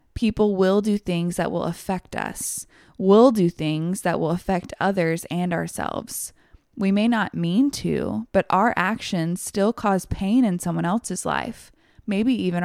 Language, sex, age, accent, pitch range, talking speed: English, female, 20-39, American, 175-230 Hz, 160 wpm